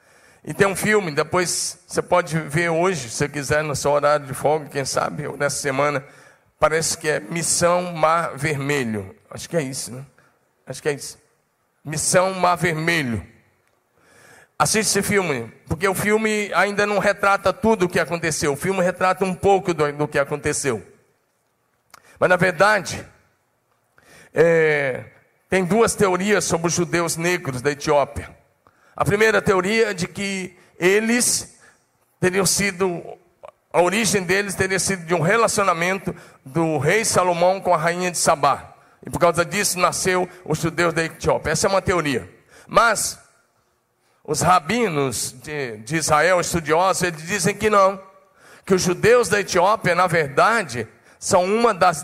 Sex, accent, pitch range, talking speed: male, Brazilian, 150-195 Hz, 150 wpm